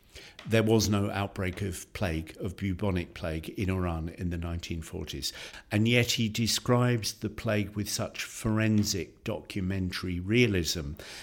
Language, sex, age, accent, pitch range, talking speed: English, male, 50-69, British, 85-105 Hz, 135 wpm